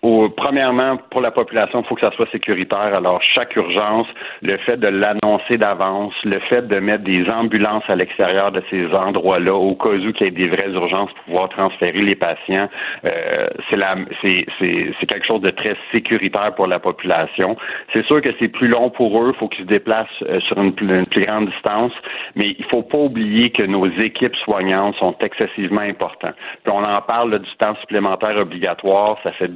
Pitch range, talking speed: 95-115 Hz, 205 wpm